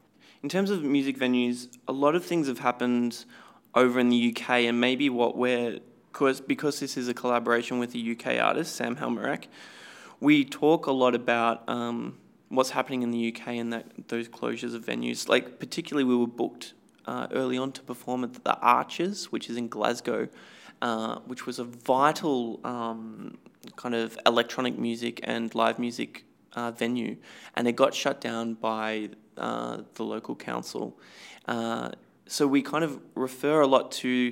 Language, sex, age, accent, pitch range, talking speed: English, male, 20-39, Australian, 115-130 Hz, 175 wpm